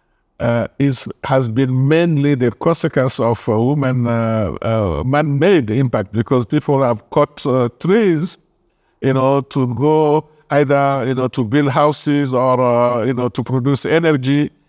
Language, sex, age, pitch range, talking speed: English, male, 50-69, 120-145 Hz, 150 wpm